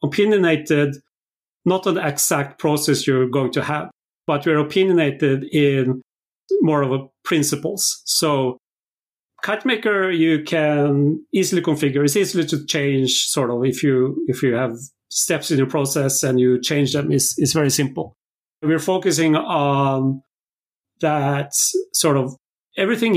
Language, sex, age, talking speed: English, male, 40-59, 135 wpm